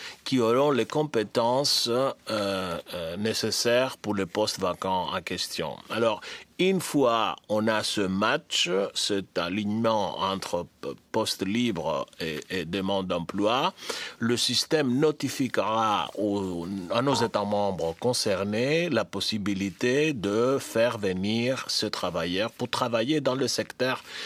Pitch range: 95-120 Hz